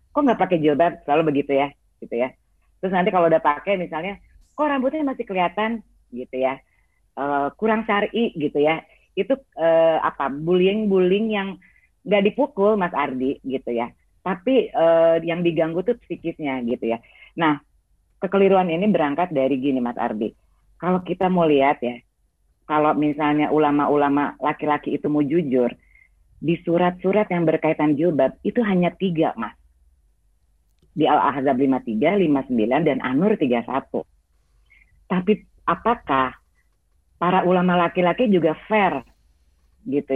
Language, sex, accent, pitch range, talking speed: Indonesian, female, native, 140-195 Hz, 135 wpm